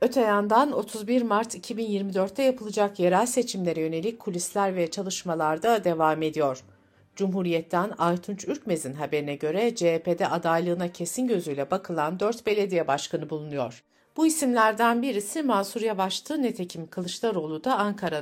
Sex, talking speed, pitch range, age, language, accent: female, 120 wpm, 160-225 Hz, 60-79, Turkish, native